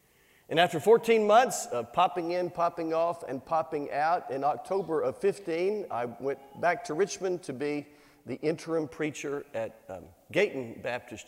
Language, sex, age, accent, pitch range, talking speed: English, male, 50-69, American, 145-185 Hz, 160 wpm